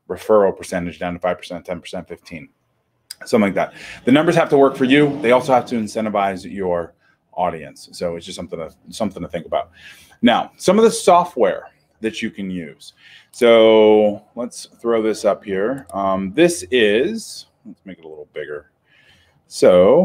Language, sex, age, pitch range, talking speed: English, male, 30-49, 100-160 Hz, 160 wpm